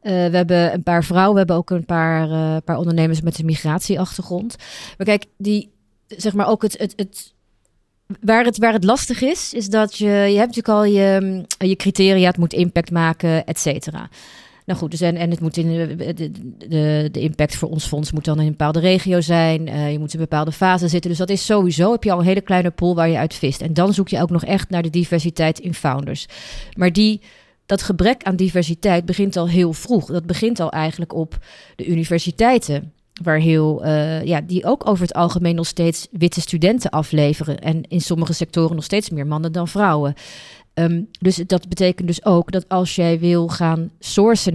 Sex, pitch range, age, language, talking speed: female, 160-185 Hz, 30-49, Dutch, 205 wpm